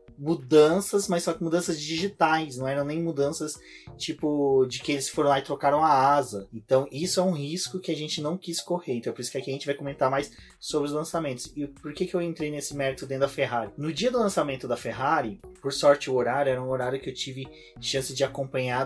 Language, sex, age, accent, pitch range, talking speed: Portuguese, male, 20-39, Brazilian, 125-150 Hz, 240 wpm